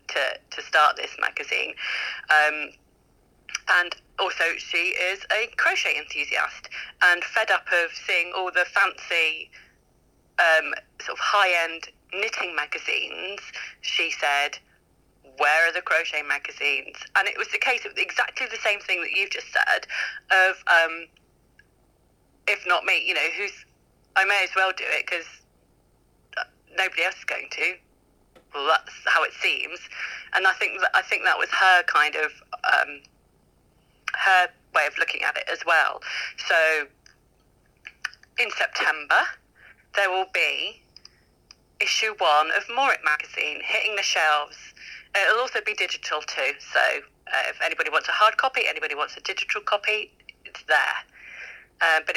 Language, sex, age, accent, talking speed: English, female, 30-49, British, 145 wpm